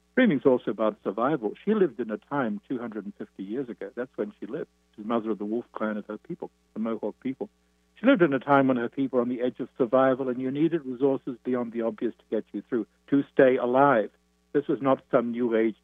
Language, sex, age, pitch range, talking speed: English, male, 60-79, 110-135 Hz, 240 wpm